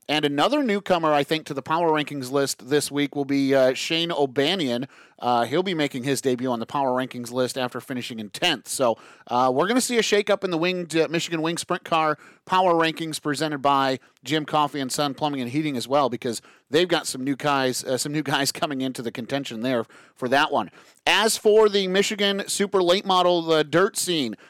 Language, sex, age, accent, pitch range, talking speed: English, male, 30-49, American, 140-170 Hz, 220 wpm